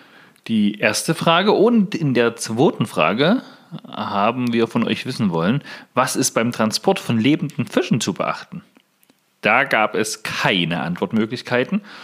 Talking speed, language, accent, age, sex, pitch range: 140 wpm, German, German, 40-59, male, 110-160 Hz